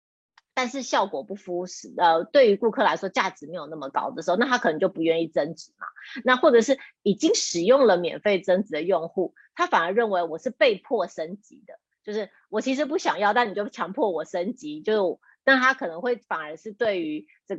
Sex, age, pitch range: female, 30-49, 180-270 Hz